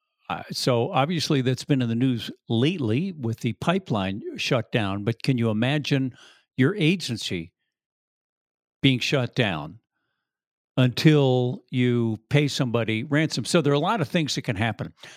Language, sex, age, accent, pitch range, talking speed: English, male, 50-69, American, 115-150 Hz, 150 wpm